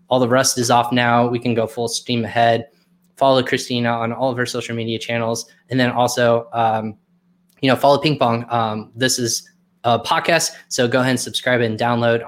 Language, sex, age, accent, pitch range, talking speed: English, male, 10-29, American, 115-135 Hz, 205 wpm